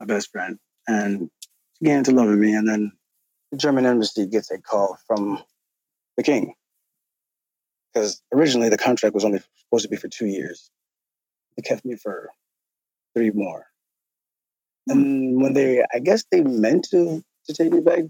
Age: 30-49